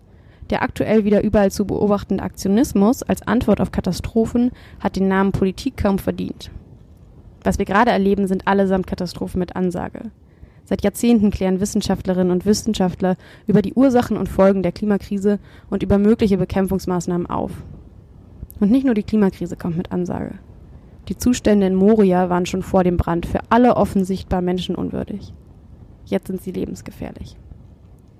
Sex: female